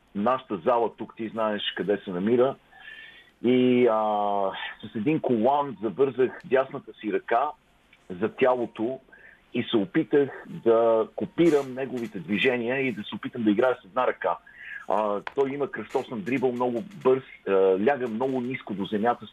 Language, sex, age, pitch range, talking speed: Bulgarian, male, 50-69, 115-140 Hz, 150 wpm